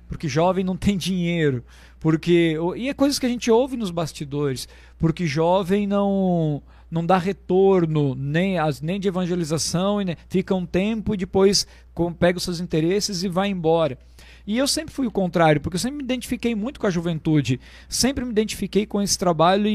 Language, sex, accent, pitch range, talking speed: Portuguese, male, Brazilian, 150-200 Hz, 180 wpm